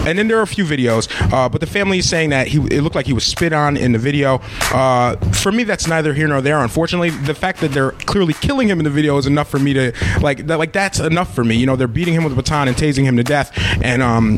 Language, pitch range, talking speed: English, 115-145 Hz, 295 wpm